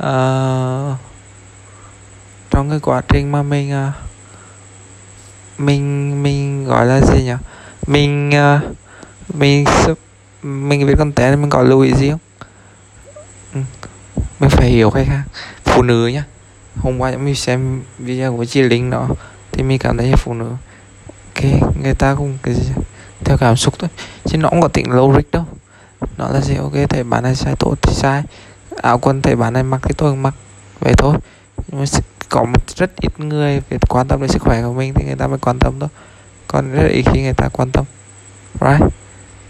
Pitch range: 100-140 Hz